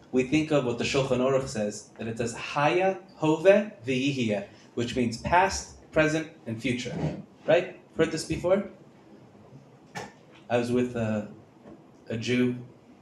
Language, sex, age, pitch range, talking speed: English, male, 30-49, 110-135 Hz, 125 wpm